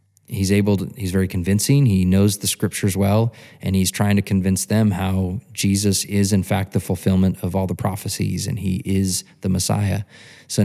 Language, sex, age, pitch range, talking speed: English, male, 20-39, 100-115 Hz, 190 wpm